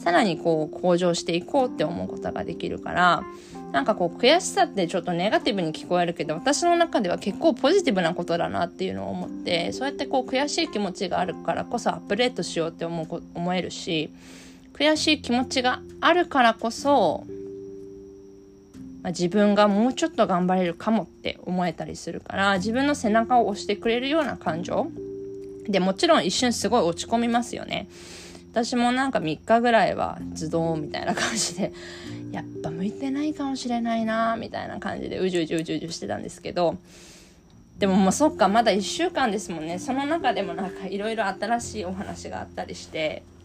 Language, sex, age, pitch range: Japanese, female, 20-39, 165-250 Hz